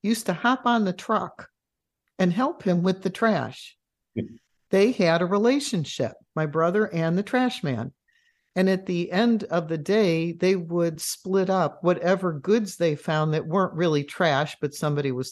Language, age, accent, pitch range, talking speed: English, 60-79, American, 145-185 Hz, 170 wpm